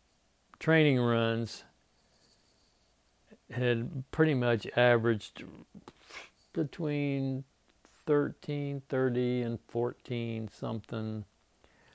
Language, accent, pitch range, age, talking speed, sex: English, American, 110-125 Hz, 60-79, 60 wpm, male